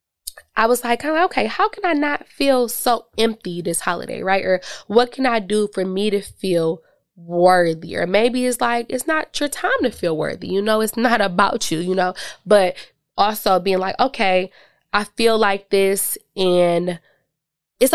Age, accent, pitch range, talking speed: 20-39, American, 180-230 Hz, 180 wpm